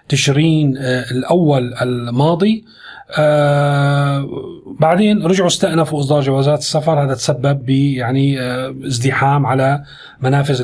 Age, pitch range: 30-49, 135-165 Hz